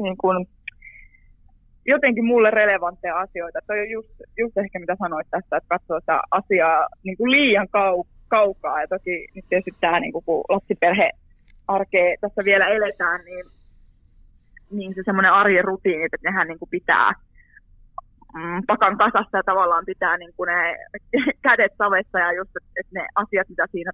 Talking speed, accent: 150 wpm, native